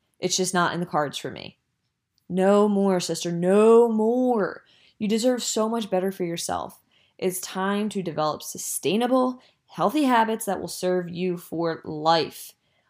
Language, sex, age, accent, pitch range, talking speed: English, female, 20-39, American, 180-235 Hz, 155 wpm